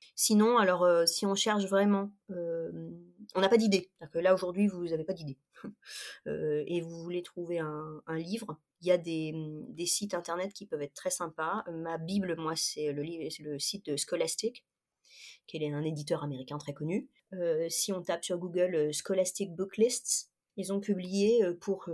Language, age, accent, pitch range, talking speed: French, 30-49, French, 165-210 Hz, 195 wpm